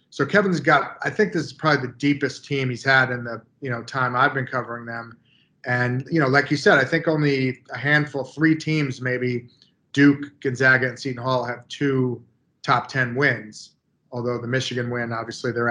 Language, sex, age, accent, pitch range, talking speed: English, male, 30-49, American, 125-150 Hz, 205 wpm